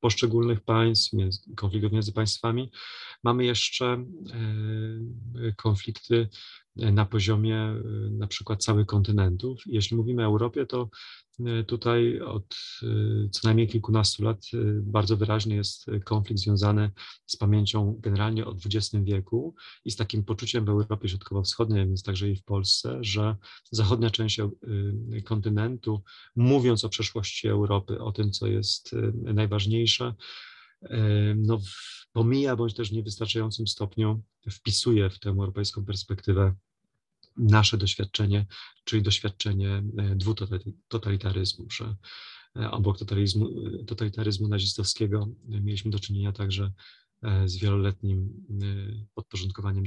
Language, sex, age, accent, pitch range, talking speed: Polish, male, 30-49, native, 100-115 Hz, 105 wpm